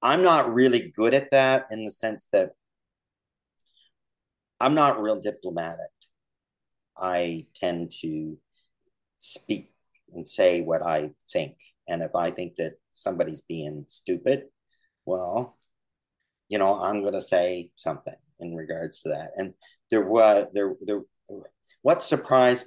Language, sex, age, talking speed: English, male, 50-69, 130 wpm